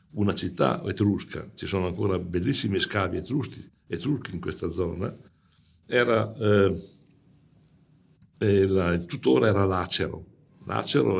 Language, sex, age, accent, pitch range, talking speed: English, male, 60-79, Italian, 95-115 Hz, 105 wpm